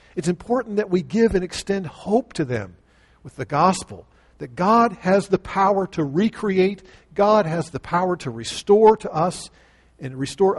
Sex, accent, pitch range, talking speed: male, American, 130-200 Hz, 170 wpm